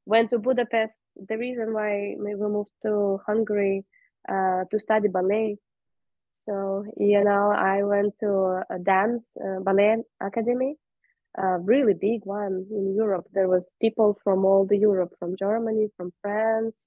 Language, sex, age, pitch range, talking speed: English, female, 20-39, 200-235 Hz, 155 wpm